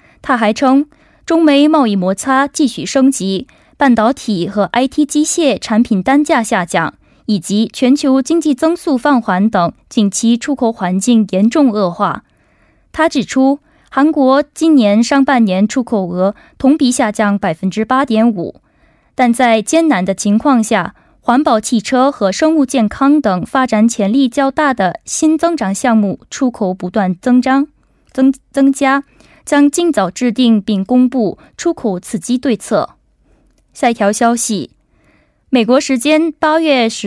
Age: 20-39